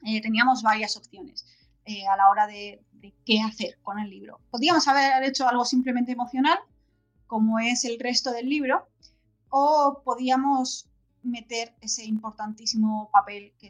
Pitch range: 210-275 Hz